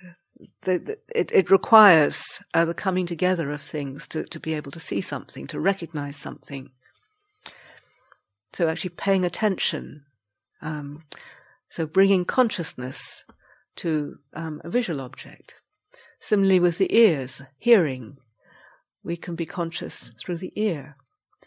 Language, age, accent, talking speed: English, 50-69, British, 125 wpm